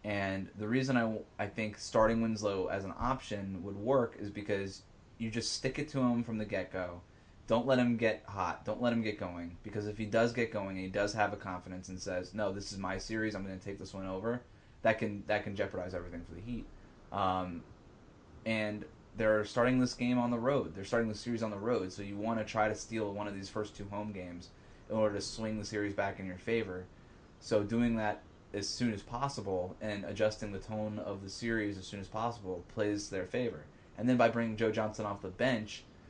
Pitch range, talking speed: 100-115 Hz, 230 wpm